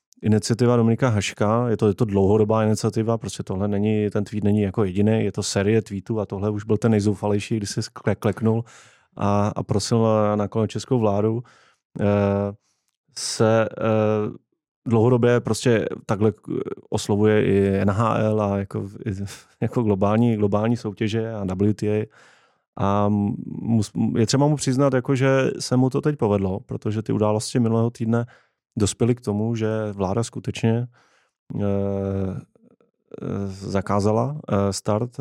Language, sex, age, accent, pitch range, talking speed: Czech, male, 30-49, native, 100-115 Hz, 135 wpm